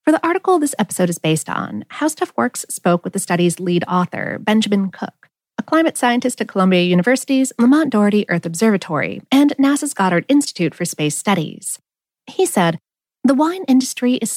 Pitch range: 180-275 Hz